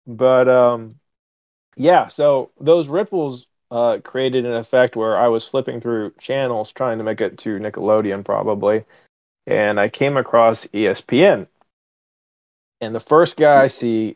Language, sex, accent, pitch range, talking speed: English, male, American, 110-135 Hz, 145 wpm